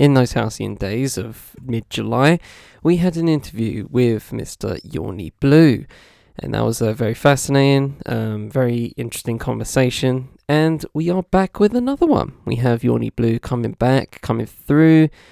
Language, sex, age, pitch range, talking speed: English, male, 10-29, 115-145 Hz, 155 wpm